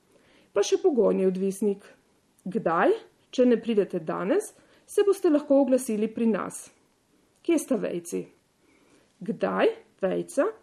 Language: Italian